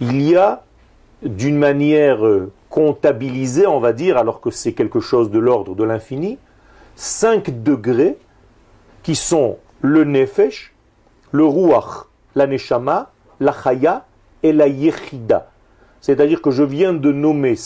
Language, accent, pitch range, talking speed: French, French, 135-175 Hz, 135 wpm